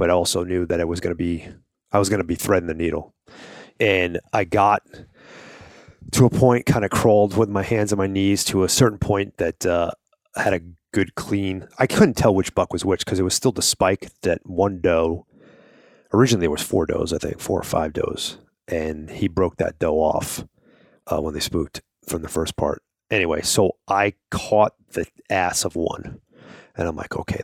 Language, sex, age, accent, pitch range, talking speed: English, male, 30-49, American, 85-100 Hz, 205 wpm